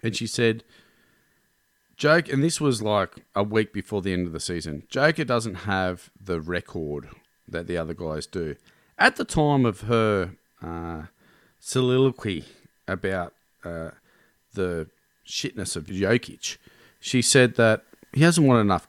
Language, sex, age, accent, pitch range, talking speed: English, male, 40-59, Australian, 95-120 Hz, 145 wpm